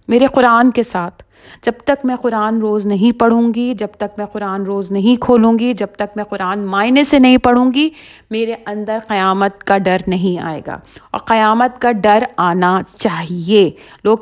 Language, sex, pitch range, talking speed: Urdu, female, 190-250 Hz, 185 wpm